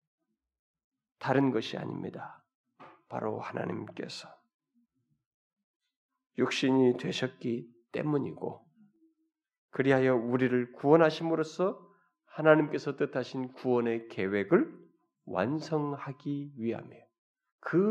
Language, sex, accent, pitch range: Korean, male, native, 130-200 Hz